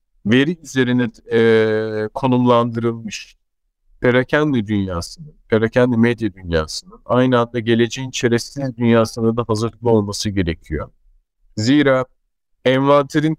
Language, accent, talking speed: Turkish, native, 90 wpm